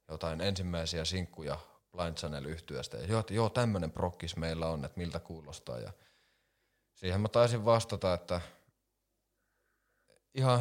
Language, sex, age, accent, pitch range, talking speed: Finnish, male, 30-49, native, 75-95 Hz, 125 wpm